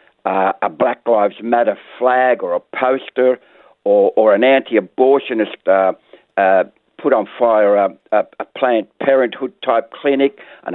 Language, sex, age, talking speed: English, male, 60-79, 135 wpm